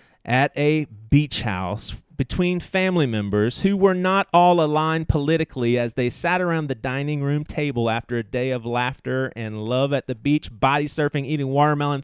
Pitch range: 120-155 Hz